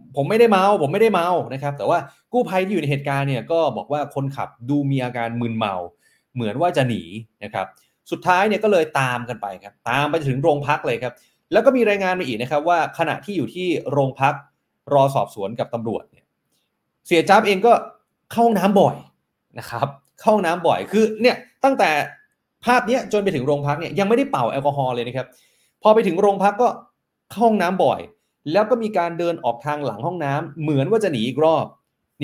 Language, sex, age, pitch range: Thai, male, 30-49, 130-175 Hz